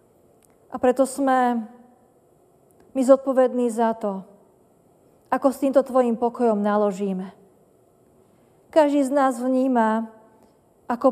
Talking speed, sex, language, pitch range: 95 wpm, female, Slovak, 210-255 Hz